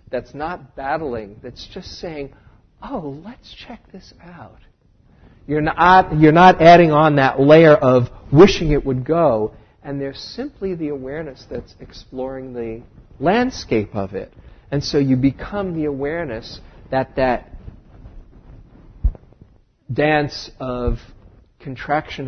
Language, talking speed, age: English, 125 wpm, 50-69